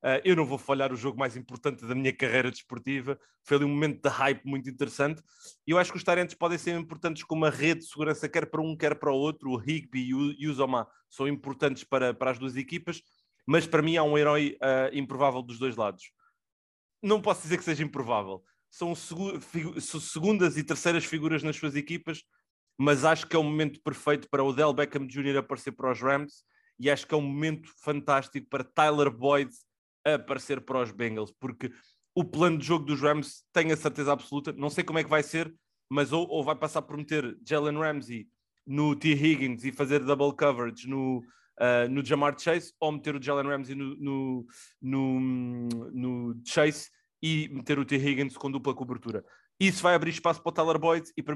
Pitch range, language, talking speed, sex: 135-155 Hz, English, 205 wpm, male